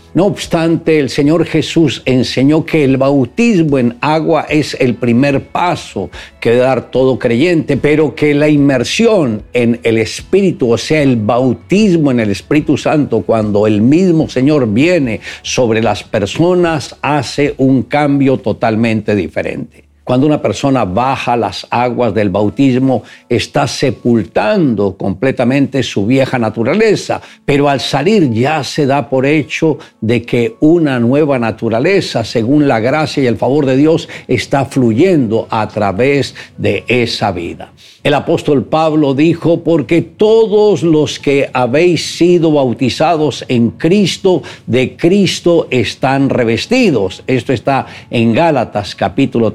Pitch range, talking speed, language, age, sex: 120-155 Hz, 135 wpm, Spanish, 60-79, male